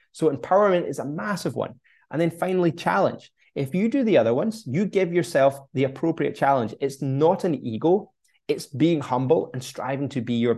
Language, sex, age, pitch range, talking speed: English, male, 20-39, 130-170 Hz, 195 wpm